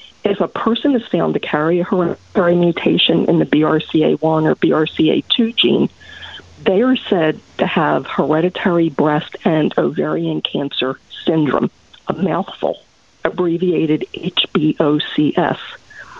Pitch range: 165-205 Hz